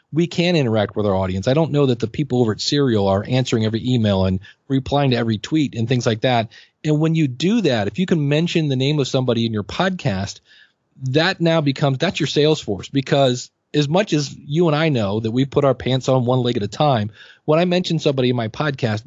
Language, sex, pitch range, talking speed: English, male, 115-150 Hz, 240 wpm